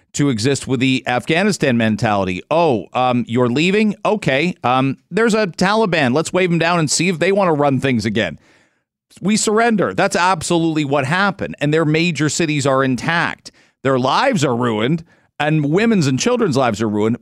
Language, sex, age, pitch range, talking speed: English, male, 40-59, 110-155 Hz, 180 wpm